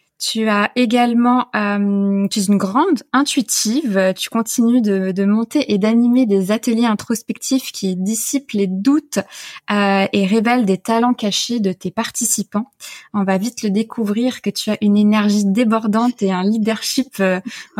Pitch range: 200-250 Hz